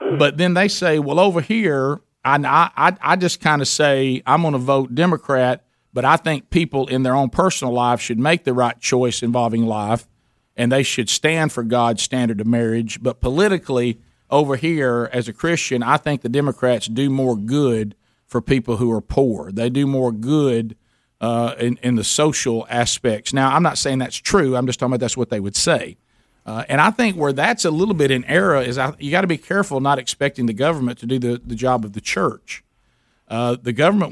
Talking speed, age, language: 210 wpm, 50-69, English